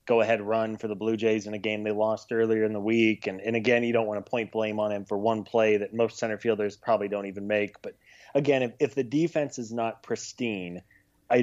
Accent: American